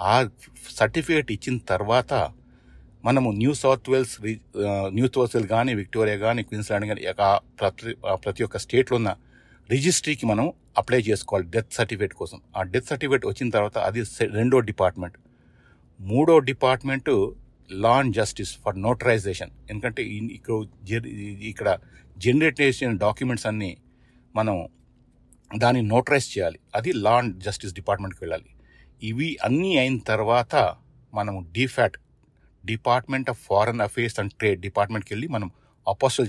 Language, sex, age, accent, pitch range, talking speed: Telugu, male, 60-79, native, 105-125 Hz, 130 wpm